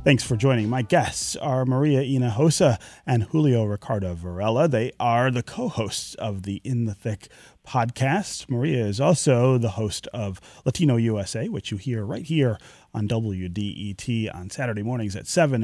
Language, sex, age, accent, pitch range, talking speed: English, male, 30-49, American, 105-145 Hz, 160 wpm